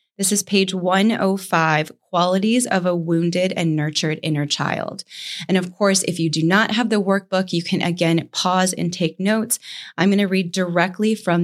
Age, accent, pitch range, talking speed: 20-39, American, 165-205 Hz, 185 wpm